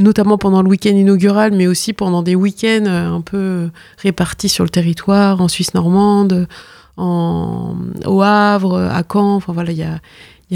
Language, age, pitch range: French, 20-39, 175-205 Hz